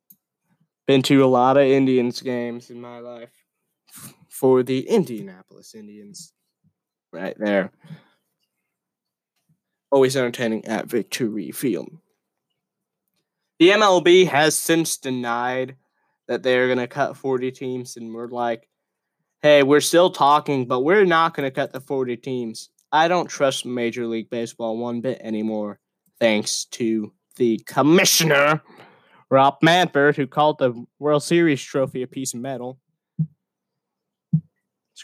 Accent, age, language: American, 20-39, English